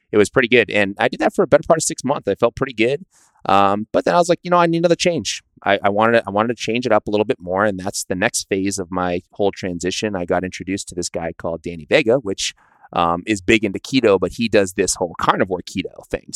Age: 30-49